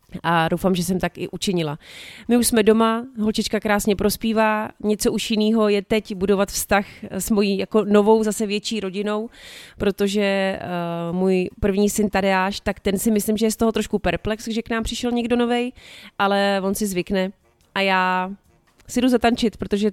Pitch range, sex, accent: 190-220 Hz, female, native